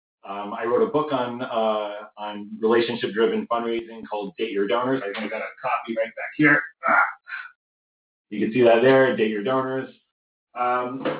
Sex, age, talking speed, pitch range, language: male, 30-49, 165 wpm, 110-140 Hz, English